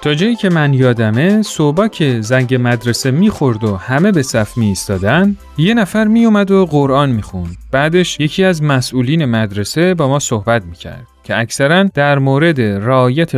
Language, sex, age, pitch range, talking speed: Persian, male, 30-49, 120-185 Hz, 170 wpm